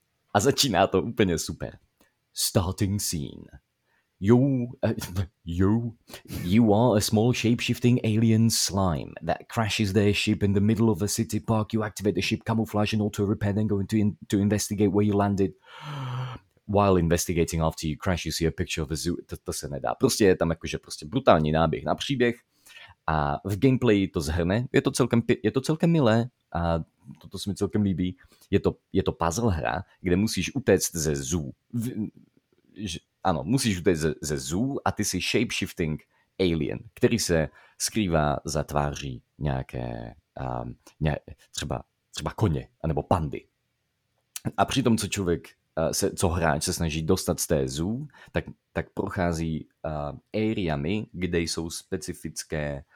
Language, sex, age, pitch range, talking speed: Slovak, male, 30-49, 80-110 Hz, 160 wpm